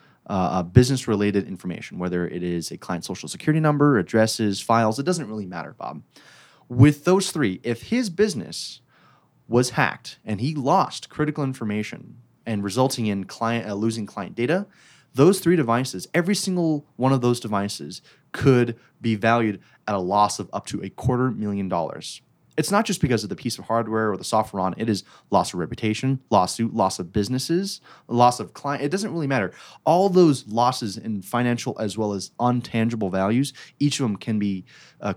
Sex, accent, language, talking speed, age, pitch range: male, American, English, 180 wpm, 20-39, 105-145 Hz